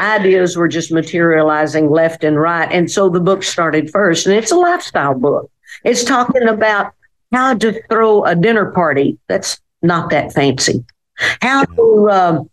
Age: 50-69